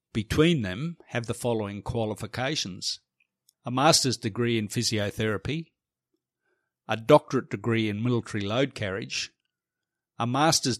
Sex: male